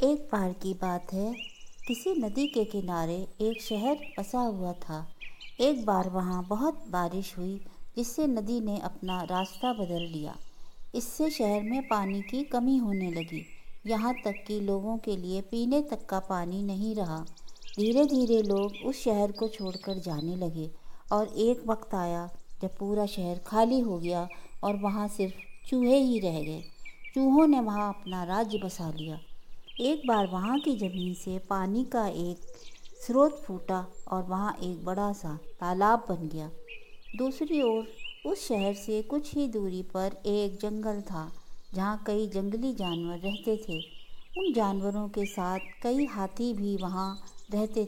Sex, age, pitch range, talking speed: female, 50-69, 180-225 Hz, 160 wpm